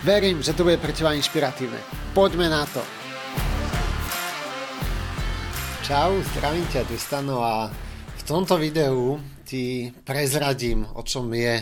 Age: 30-49